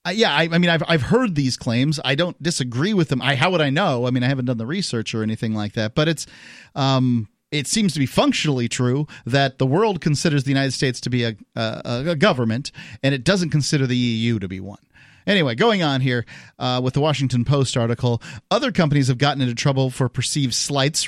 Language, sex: English, male